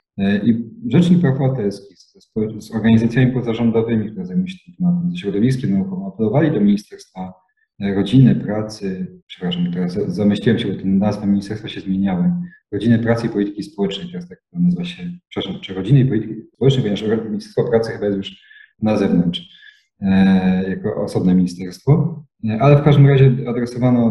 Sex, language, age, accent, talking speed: male, English, 40-59, Polish, 150 wpm